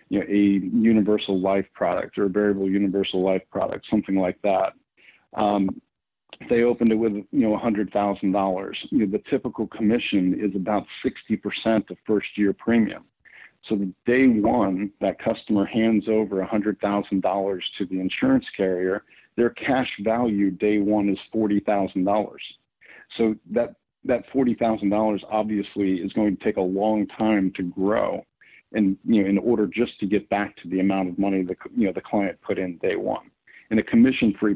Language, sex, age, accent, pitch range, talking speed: English, male, 50-69, American, 95-110 Hz, 160 wpm